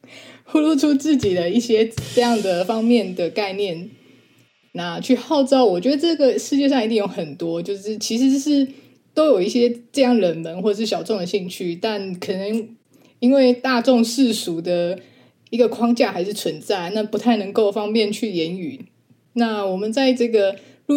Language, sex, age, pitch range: Chinese, female, 20-39, 195-255 Hz